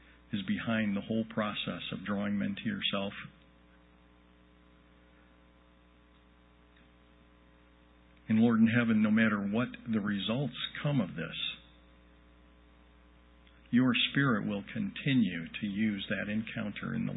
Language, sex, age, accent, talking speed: English, male, 50-69, American, 110 wpm